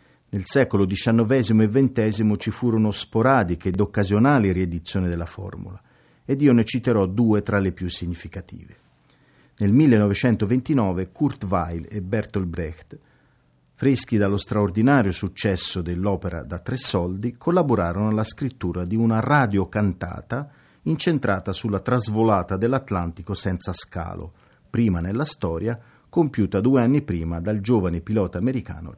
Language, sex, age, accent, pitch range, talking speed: Italian, male, 50-69, native, 95-125 Hz, 125 wpm